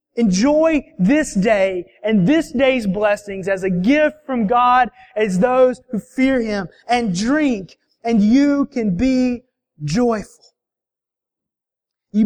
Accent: American